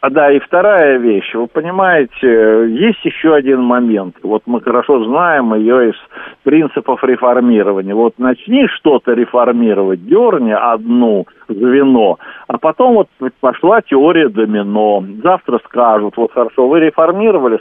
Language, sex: Russian, male